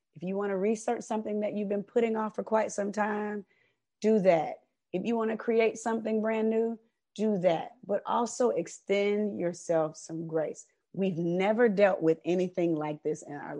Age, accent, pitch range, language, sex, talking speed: 30-49, American, 175-230 Hz, English, female, 185 wpm